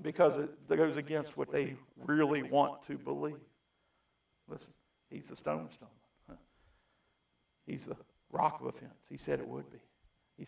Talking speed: 150 wpm